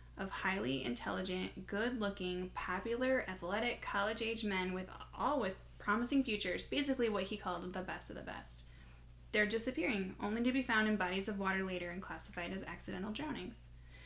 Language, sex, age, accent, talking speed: English, female, 10-29, American, 160 wpm